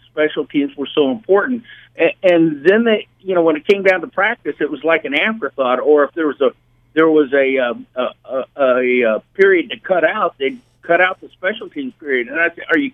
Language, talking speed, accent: English, 230 wpm, American